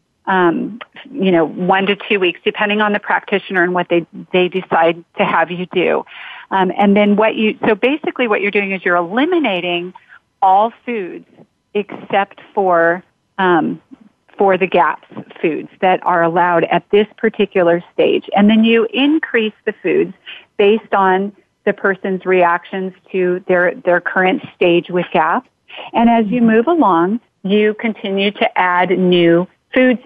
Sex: female